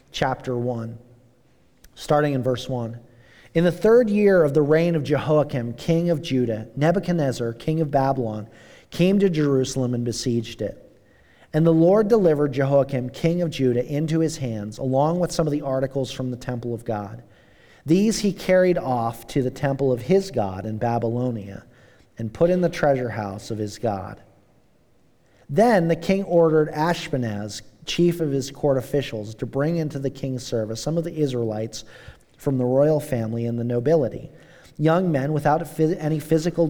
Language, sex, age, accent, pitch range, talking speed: English, male, 40-59, American, 120-165 Hz, 170 wpm